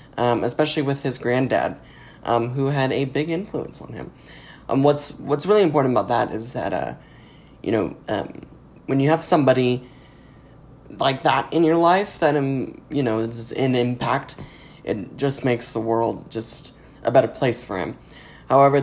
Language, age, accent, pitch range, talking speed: English, 10-29, American, 120-145 Hz, 170 wpm